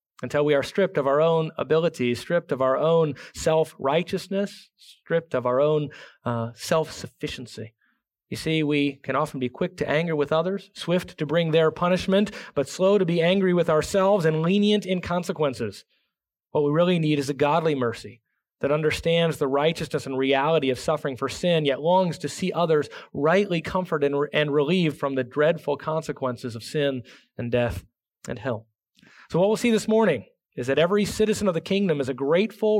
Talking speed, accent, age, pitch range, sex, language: 180 wpm, American, 30-49, 140-185 Hz, male, English